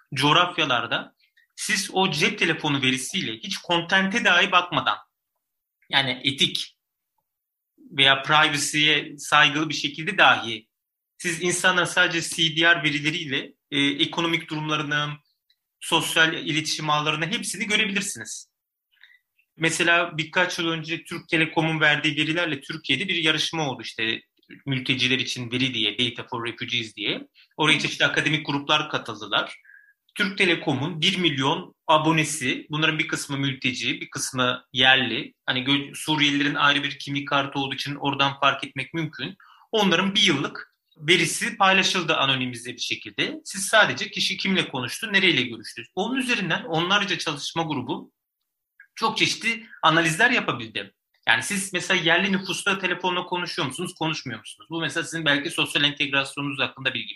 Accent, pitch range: native, 140-175 Hz